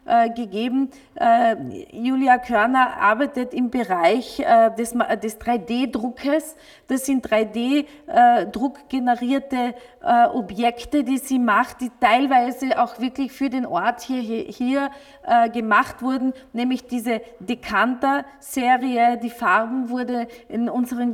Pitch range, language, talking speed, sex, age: 225-260 Hz, German, 110 wpm, female, 30-49